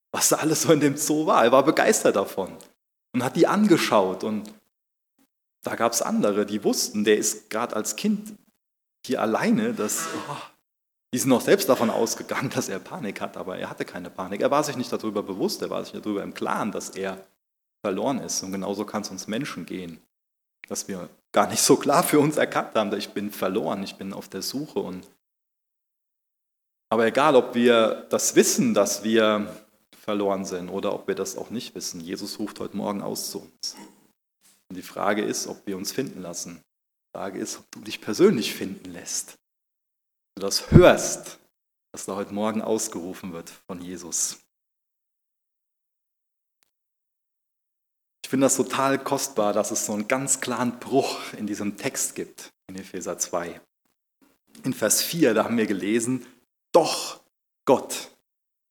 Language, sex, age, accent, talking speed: German, male, 30-49, German, 175 wpm